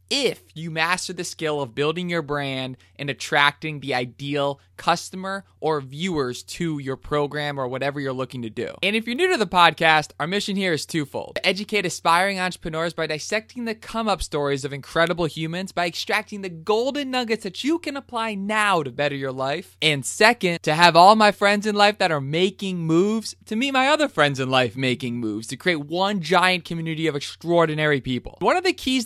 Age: 20-39